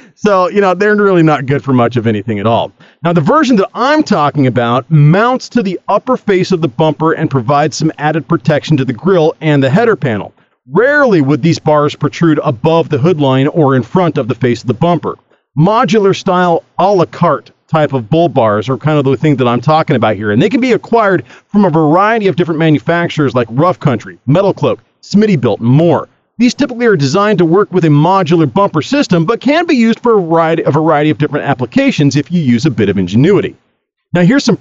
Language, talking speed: English, 220 wpm